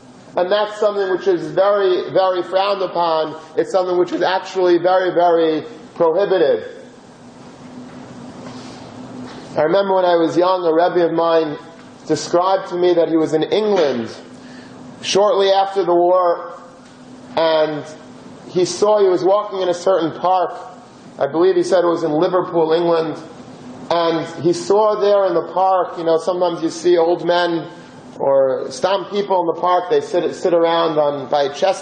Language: English